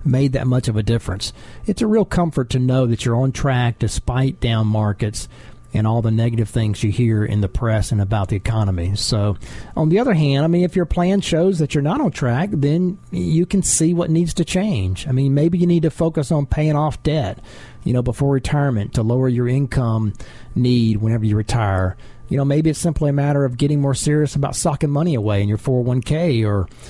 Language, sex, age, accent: English, male, 40-59, American